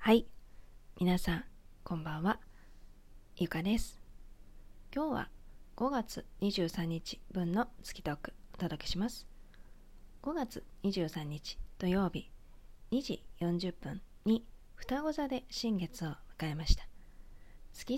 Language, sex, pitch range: Japanese, female, 155-225 Hz